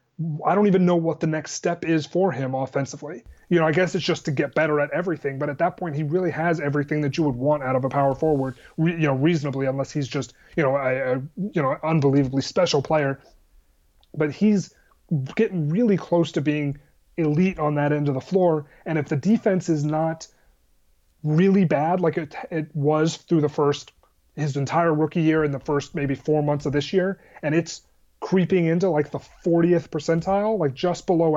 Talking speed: 210 wpm